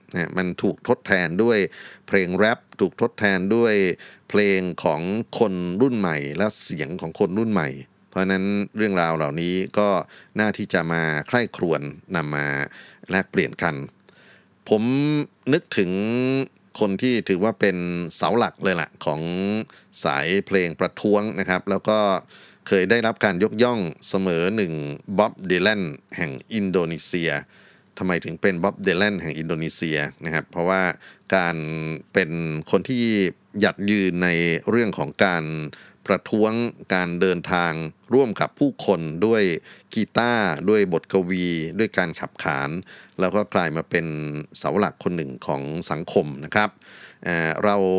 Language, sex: Thai, male